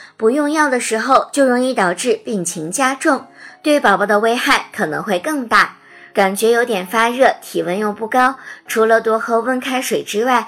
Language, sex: Chinese, male